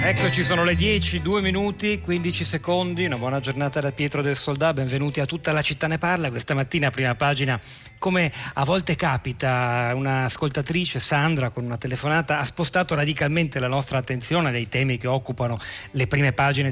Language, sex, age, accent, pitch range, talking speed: Italian, male, 40-59, native, 125-150 Hz, 175 wpm